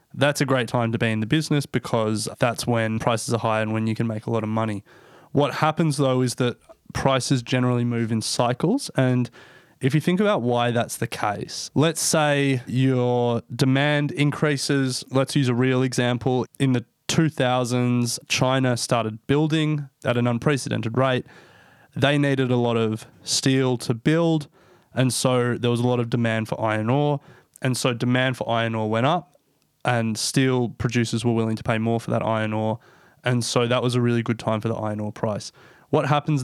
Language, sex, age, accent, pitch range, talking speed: English, male, 20-39, Australian, 115-140 Hz, 195 wpm